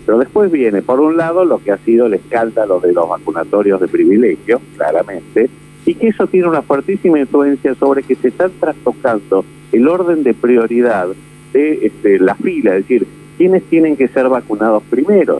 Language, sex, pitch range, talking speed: Spanish, male, 110-170 Hz, 180 wpm